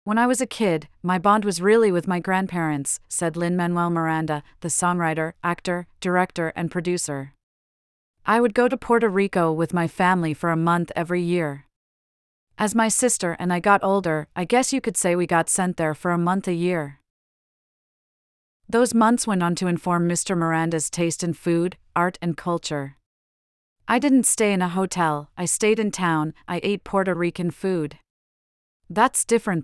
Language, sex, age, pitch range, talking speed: English, female, 40-59, 165-200 Hz, 175 wpm